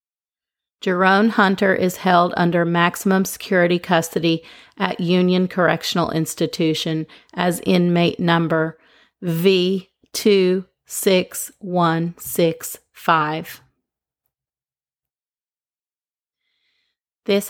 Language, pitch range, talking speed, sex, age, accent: English, 170-200 Hz, 60 wpm, female, 40-59, American